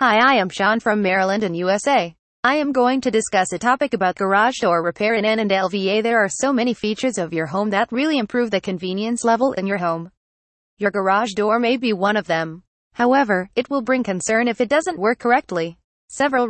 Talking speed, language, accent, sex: 215 wpm, English, American, female